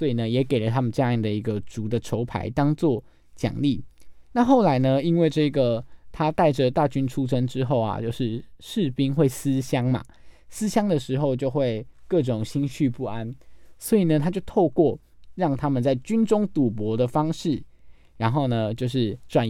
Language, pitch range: Chinese, 115-155 Hz